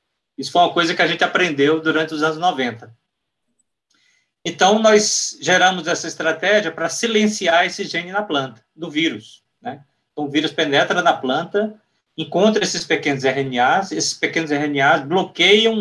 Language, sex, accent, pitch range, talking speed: Portuguese, male, Brazilian, 140-205 Hz, 150 wpm